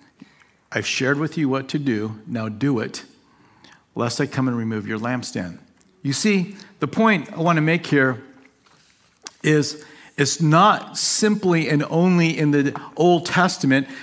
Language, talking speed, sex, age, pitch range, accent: English, 155 wpm, male, 50-69, 140-180 Hz, American